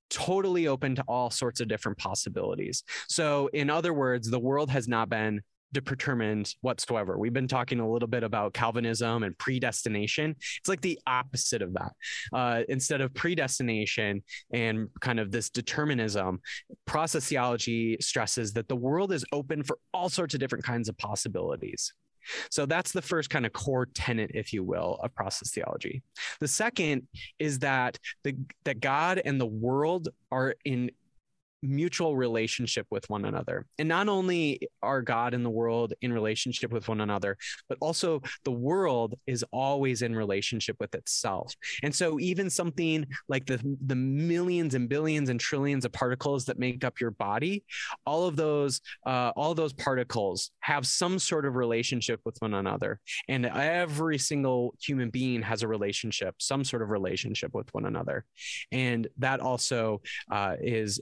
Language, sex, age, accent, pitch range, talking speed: English, male, 20-39, American, 115-145 Hz, 165 wpm